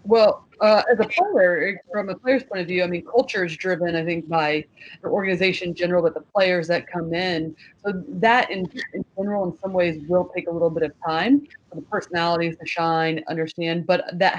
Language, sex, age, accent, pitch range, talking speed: English, female, 30-49, American, 165-195 Hz, 215 wpm